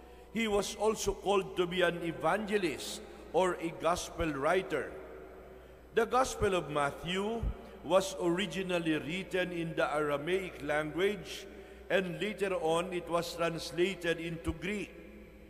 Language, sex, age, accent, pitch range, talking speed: English, male, 50-69, Filipino, 160-195 Hz, 120 wpm